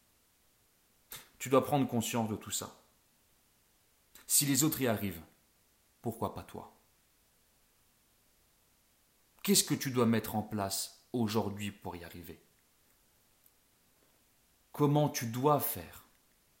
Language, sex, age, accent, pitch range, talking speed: French, male, 40-59, French, 95-130 Hz, 110 wpm